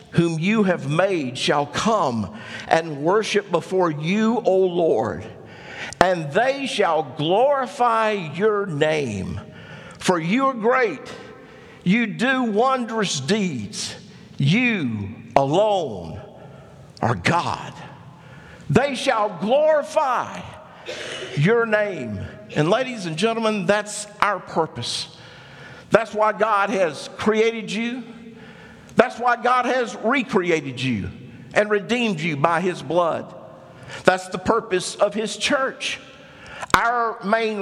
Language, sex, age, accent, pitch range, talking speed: English, male, 50-69, American, 170-230 Hz, 110 wpm